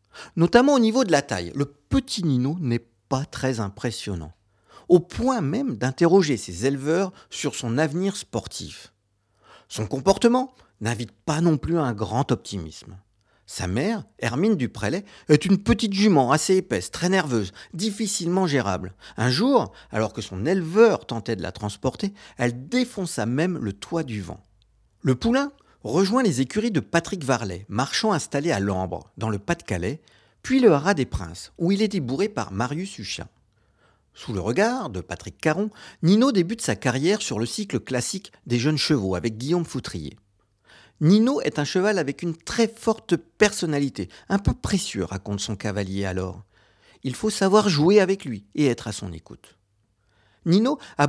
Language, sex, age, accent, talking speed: French, male, 50-69, French, 165 wpm